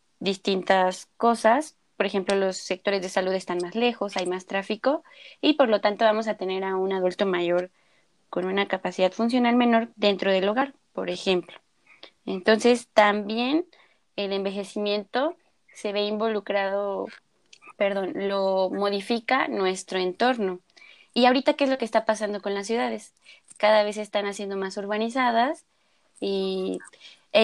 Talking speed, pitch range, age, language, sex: 145 wpm, 195-235 Hz, 20-39, Spanish, female